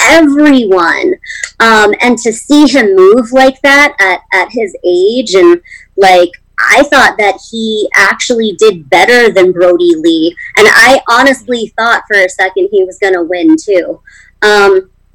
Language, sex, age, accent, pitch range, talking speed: English, male, 30-49, American, 200-295 Hz, 150 wpm